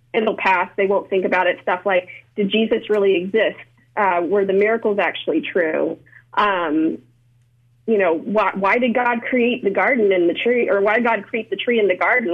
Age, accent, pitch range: 30-49, American, 185-240 Hz